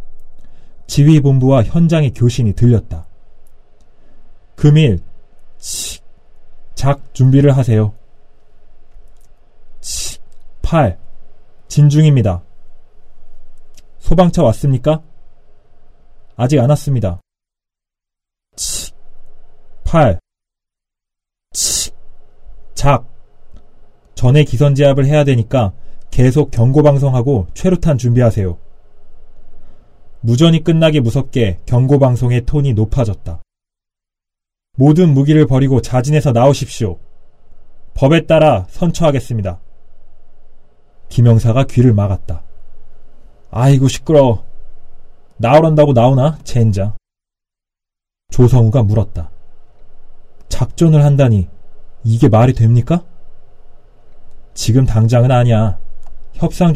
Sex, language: male, Korean